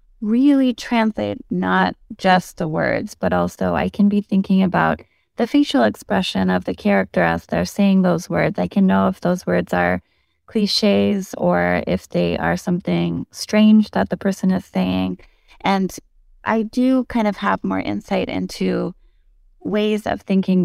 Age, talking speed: 20-39, 160 wpm